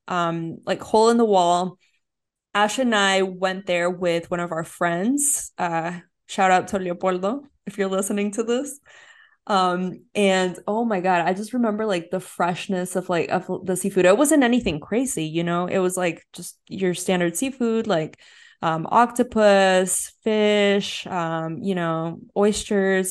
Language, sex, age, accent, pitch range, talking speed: English, female, 20-39, American, 175-220 Hz, 165 wpm